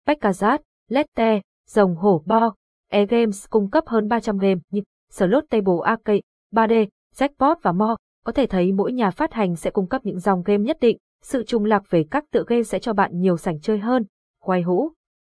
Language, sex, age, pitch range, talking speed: Vietnamese, female, 20-39, 185-235 Hz, 200 wpm